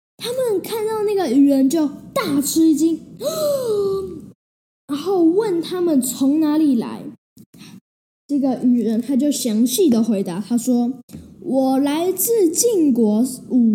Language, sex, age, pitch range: Chinese, female, 10-29, 240-350 Hz